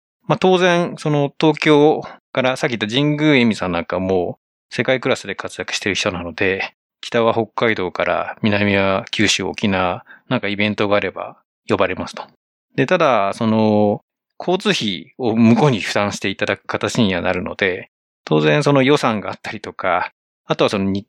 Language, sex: Japanese, male